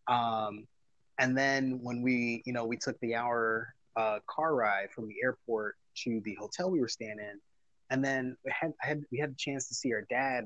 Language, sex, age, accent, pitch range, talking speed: English, male, 30-49, American, 110-135 Hz, 220 wpm